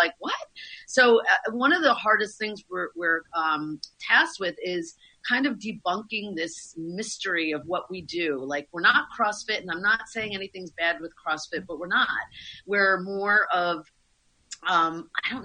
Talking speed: 175 wpm